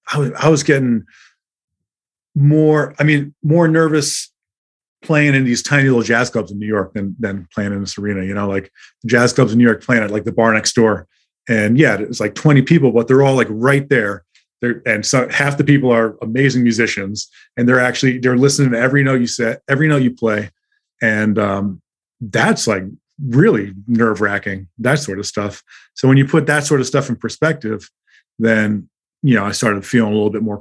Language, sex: English, male